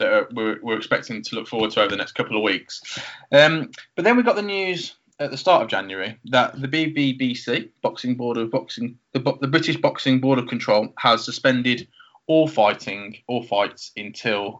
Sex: male